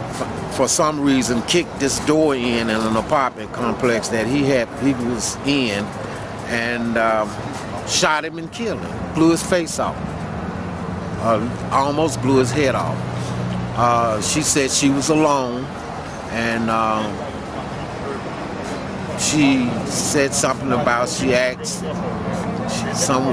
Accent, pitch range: American, 115-140 Hz